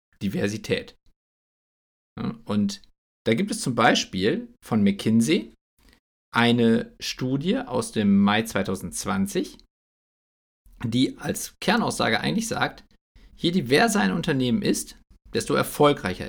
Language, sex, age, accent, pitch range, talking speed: German, male, 50-69, German, 95-145 Hz, 100 wpm